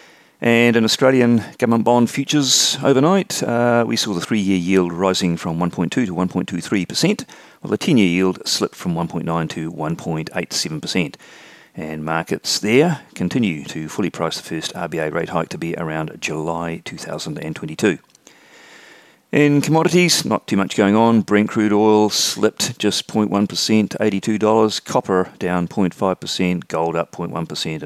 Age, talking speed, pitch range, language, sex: 40-59, 140 wpm, 90-130 Hz, English, male